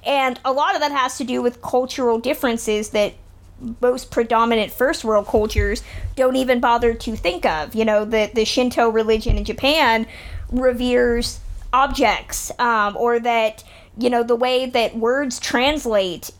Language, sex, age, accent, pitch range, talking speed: English, female, 30-49, American, 225-275 Hz, 155 wpm